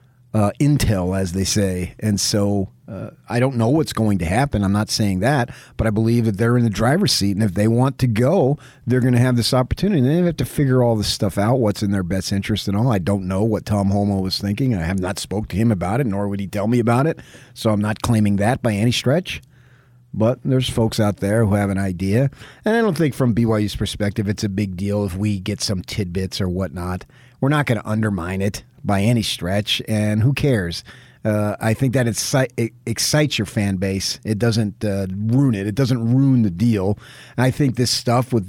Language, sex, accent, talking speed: English, male, American, 230 wpm